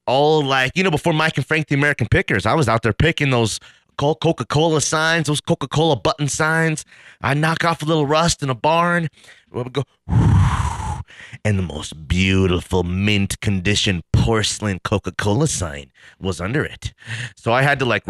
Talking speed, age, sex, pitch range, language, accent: 165 wpm, 30-49, male, 90-130 Hz, English, American